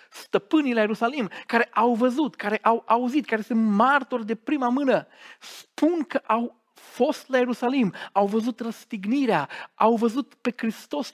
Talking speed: 150 wpm